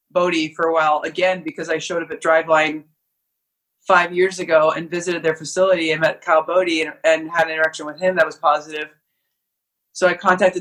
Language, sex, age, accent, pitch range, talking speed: English, female, 20-39, American, 165-195 Hz, 200 wpm